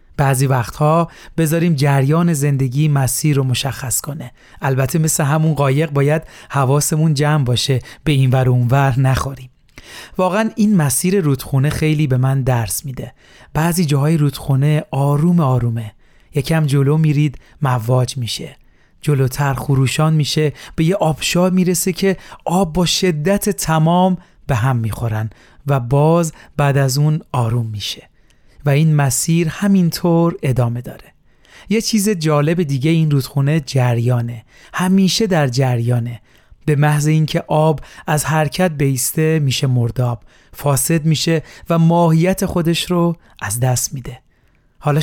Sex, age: male, 40-59